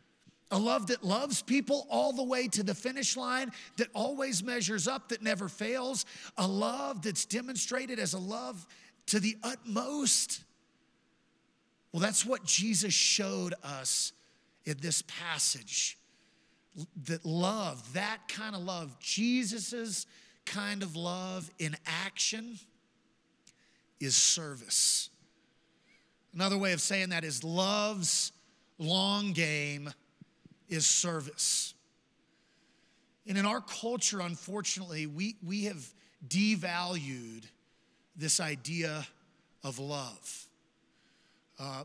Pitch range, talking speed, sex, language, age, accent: 170-215 Hz, 110 wpm, male, English, 40-59, American